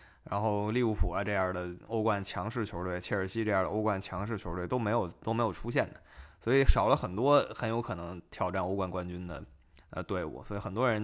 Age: 20-39